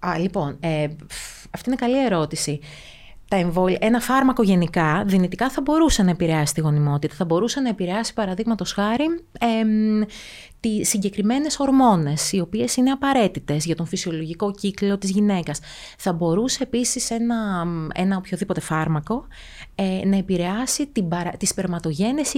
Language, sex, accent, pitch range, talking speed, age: Greek, female, native, 165-225 Hz, 140 wpm, 30-49